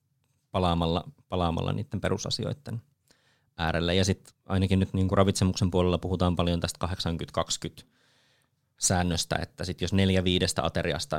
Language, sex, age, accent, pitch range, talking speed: Finnish, male, 30-49, native, 90-115 Hz, 125 wpm